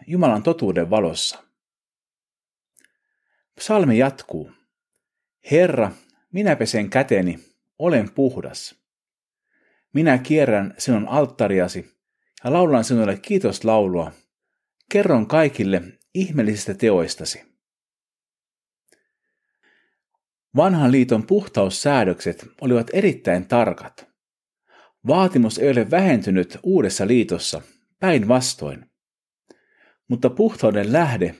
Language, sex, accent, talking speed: Finnish, male, native, 75 wpm